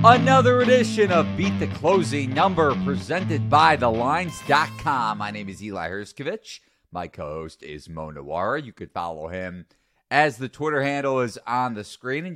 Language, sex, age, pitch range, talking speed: English, male, 30-49, 95-130 Hz, 160 wpm